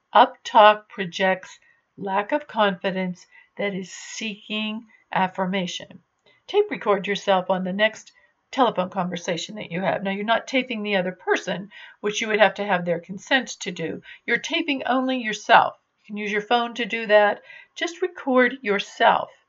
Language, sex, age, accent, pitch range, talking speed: English, female, 50-69, American, 195-255 Hz, 160 wpm